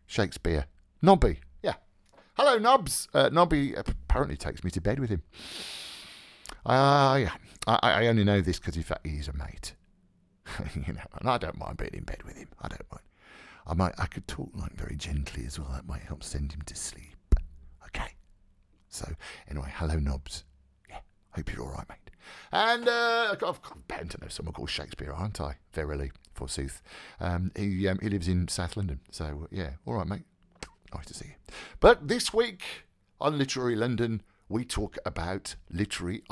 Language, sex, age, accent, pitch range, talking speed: English, male, 50-69, British, 85-130 Hz, 180 wpm